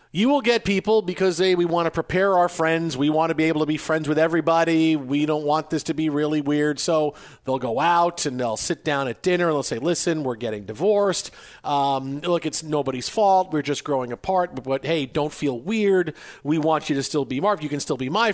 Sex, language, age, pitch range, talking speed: male, English, 40-59, 150-195 Hz, 240 wpm